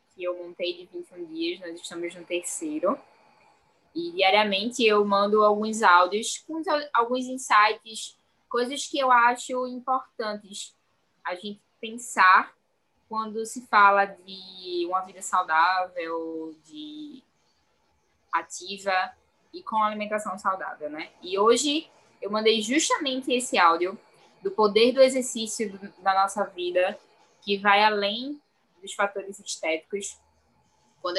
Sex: female